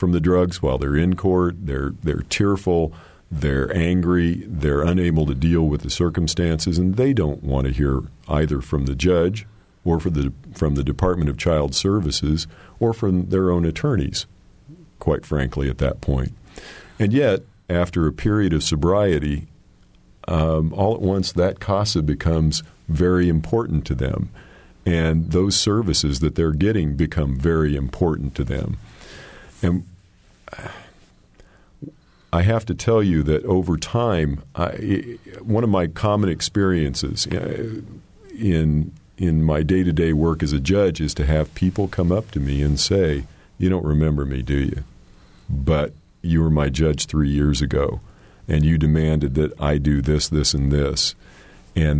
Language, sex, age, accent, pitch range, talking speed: English, male, 50-69, American, 75-90 Hz, 155 wpm